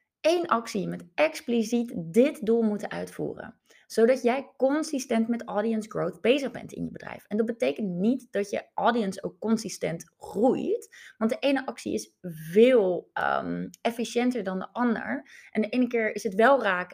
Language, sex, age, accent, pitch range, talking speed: Dutch, female, 20-39, Dutch, 205-260 Hz, 165 wpm